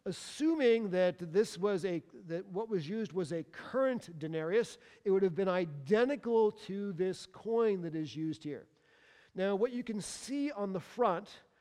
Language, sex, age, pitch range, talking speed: English, male, 50-69, 180-235 Hz, 170 wpm